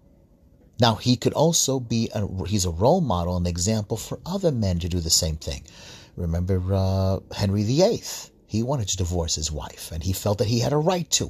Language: English